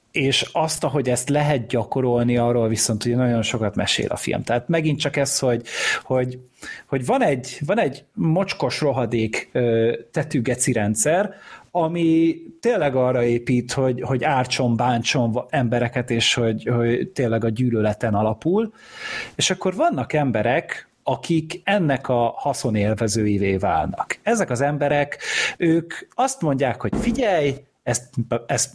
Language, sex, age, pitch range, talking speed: Hungarian, male, 30-49, 120-155 Hz, 135 wpm